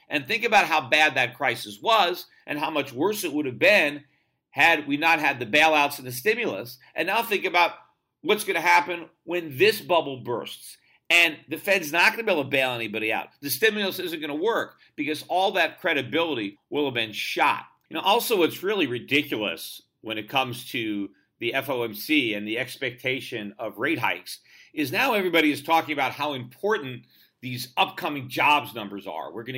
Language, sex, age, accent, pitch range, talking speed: English, male, 50-69, American, 125-175 Hz, 195 wpm